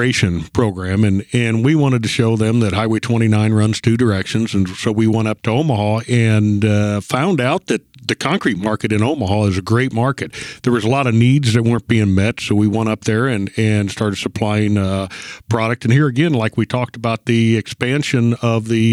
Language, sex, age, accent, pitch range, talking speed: English, male, 50-69, American, 110-130 Hz, 210 wpm